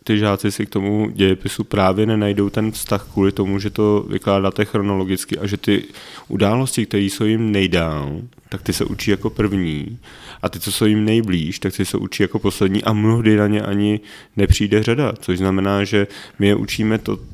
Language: Czech